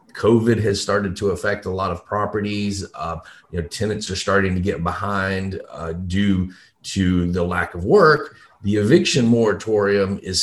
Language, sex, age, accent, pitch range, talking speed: English, male, 30-49, American, 90-115 Hz, 165 wpm